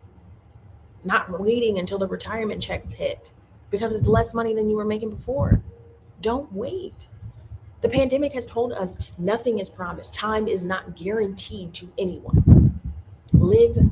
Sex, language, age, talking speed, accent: female, English, 30-49, 140 wpm, American